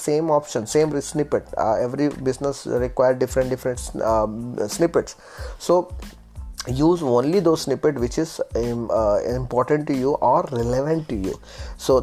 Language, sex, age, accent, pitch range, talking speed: Malayalam, male, 20-39, native, 115-145 Hz, 145 wpm